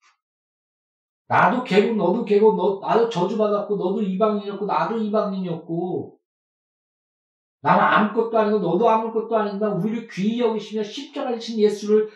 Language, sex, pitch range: Korean, male, 190-230 Hz